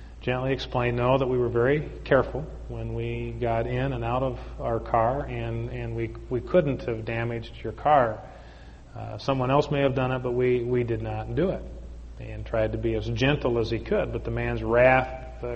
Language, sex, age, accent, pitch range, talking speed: English, male, 40-59, American, 115-130 Hz, 210 wpm